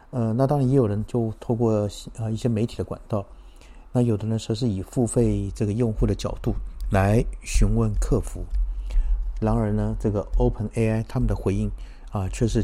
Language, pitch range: Chinese, 100-120 Hz